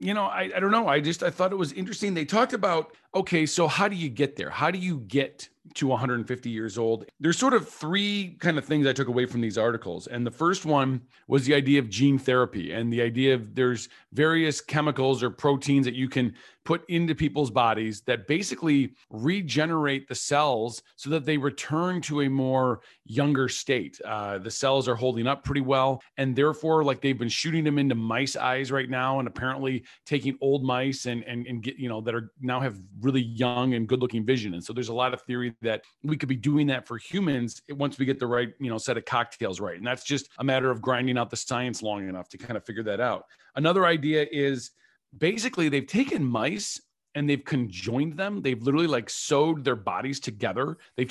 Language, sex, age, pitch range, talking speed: English, male, 40-59, 120-150 Hz, 220 wpm